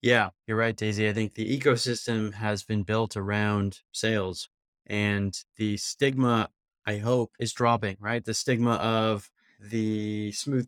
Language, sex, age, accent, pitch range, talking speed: English, male, 20-39, American, 110-120 Hz, 145 wpm